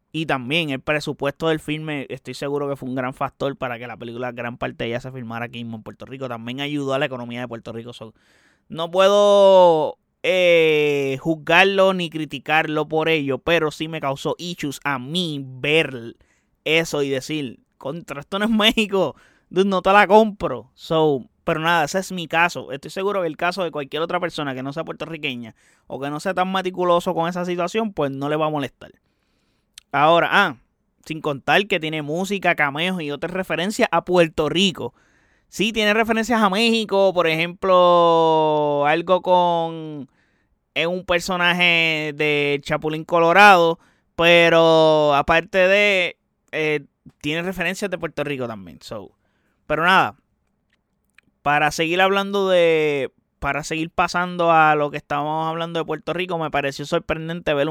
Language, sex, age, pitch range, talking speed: Spanish, male, 20-39, 145-175 Hz, 165 wpm